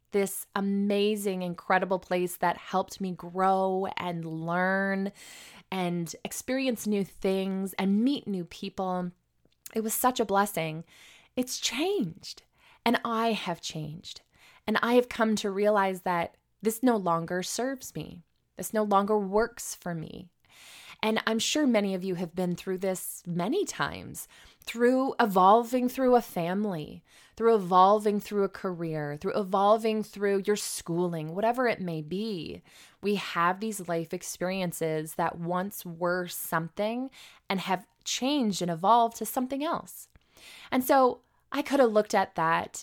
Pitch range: 175-220 Hz